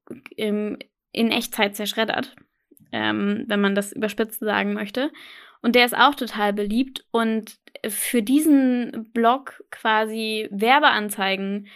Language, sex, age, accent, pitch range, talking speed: German, female, 10-29, German, 210-255 Hz, 110 wpm